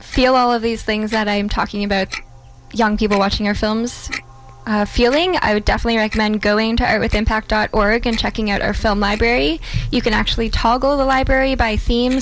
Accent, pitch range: American, 205-240 Hz